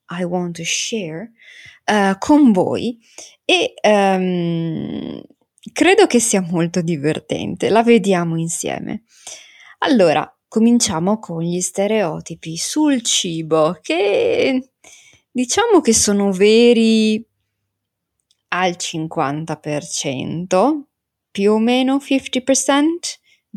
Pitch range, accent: 170-245 Hz, native